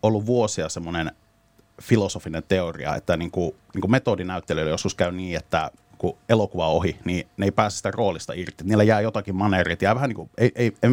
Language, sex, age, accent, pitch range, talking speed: Finnish, male, 30-49, native, 95-115 Hz, 190 wpm